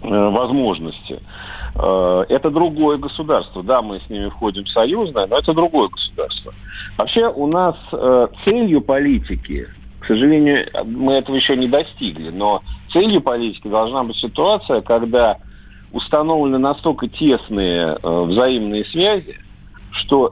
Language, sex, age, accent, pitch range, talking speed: Russian, male, 50-69, native, 115-160 Hz, 120 wpm